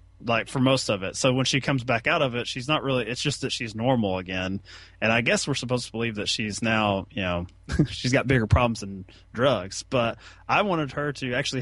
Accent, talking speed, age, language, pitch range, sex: American, 240 wpm, 20-39, English, 100-130 Hz, male